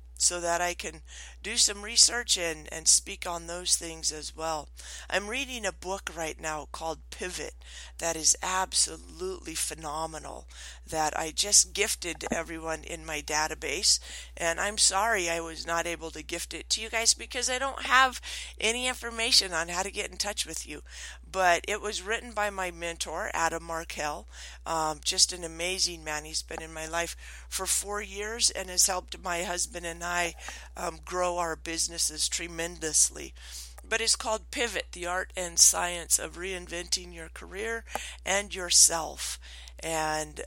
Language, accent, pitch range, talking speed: English, American, 150-190 Hz, 165 wpm